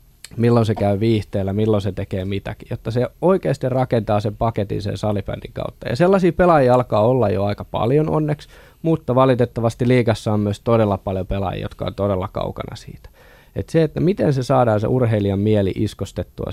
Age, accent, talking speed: 20-39, native, 180 wpm